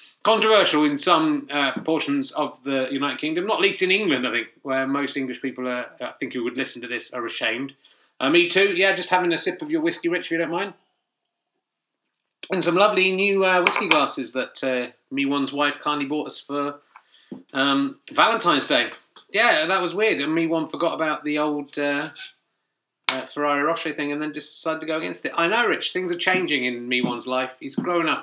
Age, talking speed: 30-49, 215 wpm